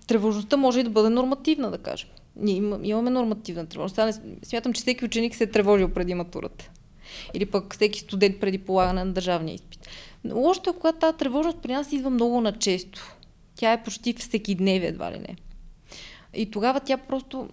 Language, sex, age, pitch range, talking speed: Bulgarian, female, 20-39, 200-250 Hz, 180 wpm